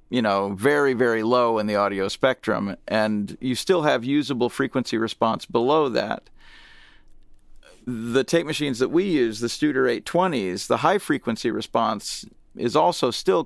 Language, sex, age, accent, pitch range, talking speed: English, male, 40-59, American, 115-135 Hz, 150 wpm